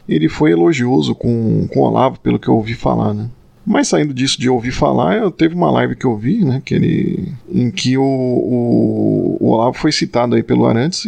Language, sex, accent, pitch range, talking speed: Portuguese, male, Brazilian, 120-175 Hz, 215 wpm